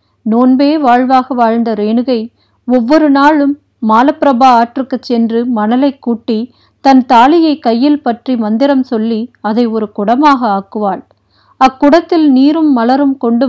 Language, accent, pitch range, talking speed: Tamil, native, 220-270 Hz, 110 wpm